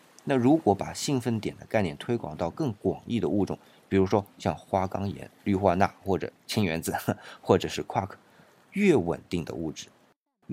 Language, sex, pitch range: Chinese, male, 95-140 Hz